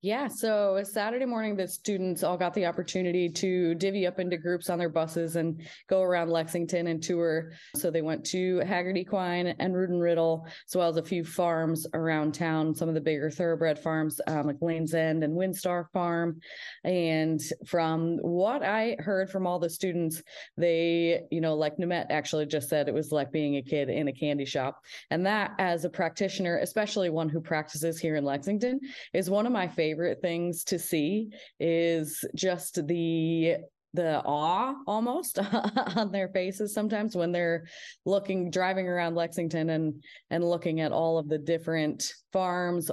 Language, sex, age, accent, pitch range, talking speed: English, female, 20-39, American, 160-185 Hz, 180 wpm